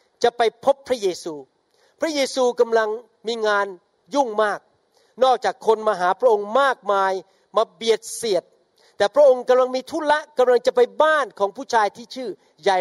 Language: Thai